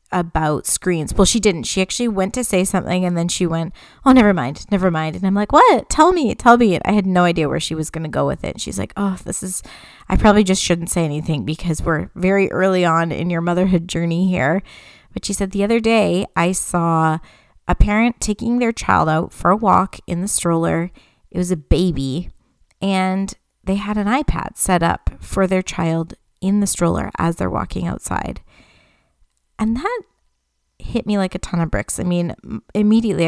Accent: American